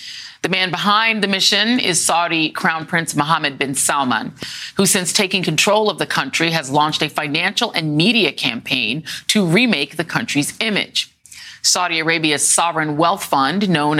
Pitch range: 150-190 Hz